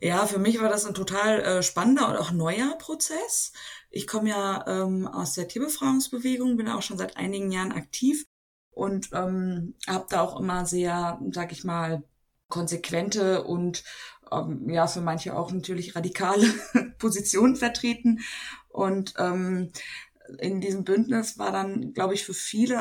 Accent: German